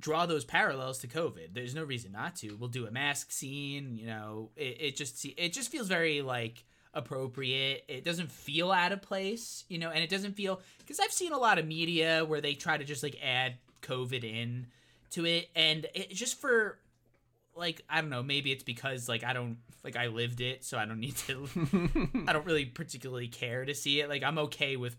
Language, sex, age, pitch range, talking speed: English, male, 20-39, 120-160 Hz, 220 wpm